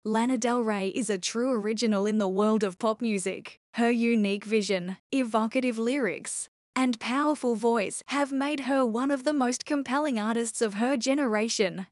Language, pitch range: English, 210-255 Hz